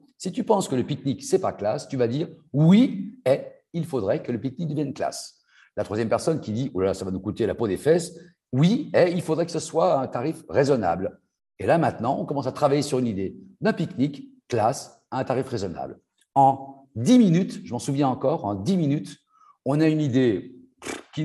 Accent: French